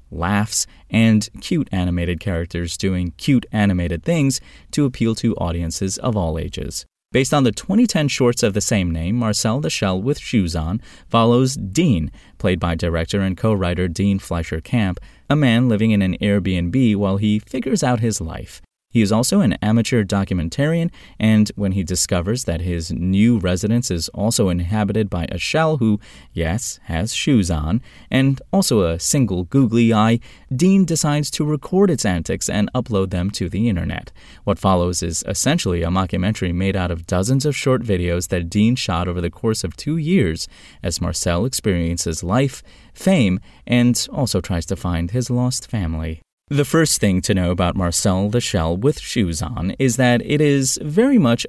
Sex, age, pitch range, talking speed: male, 20-39, 90-125 Hz, 170 wpm